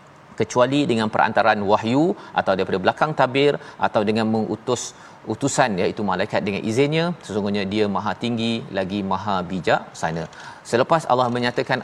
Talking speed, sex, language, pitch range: 135 wpm, male, Malayalam, 115-140 Hz